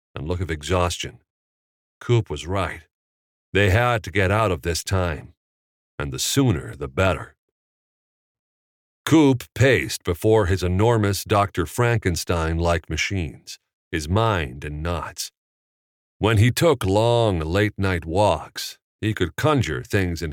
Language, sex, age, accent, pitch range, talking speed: English, male, 50-69, American, 80-110 Hz, 125 wpm